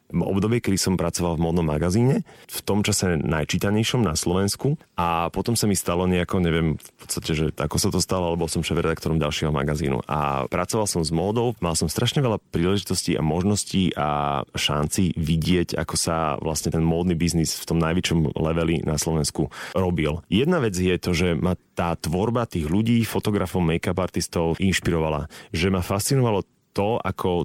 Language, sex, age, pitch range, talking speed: Slovak, male, 30-49, 80-100 Hz, 175 wpm